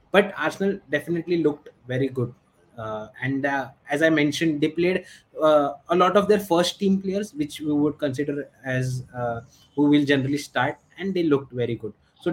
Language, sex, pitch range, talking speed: English, male, 135-170 Hz, 185 wpm